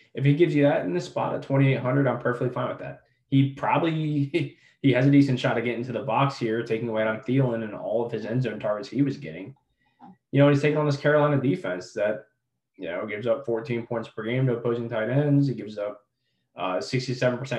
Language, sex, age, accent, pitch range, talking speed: English, male, 20-39, American, 115-135 Hz, 235 wpm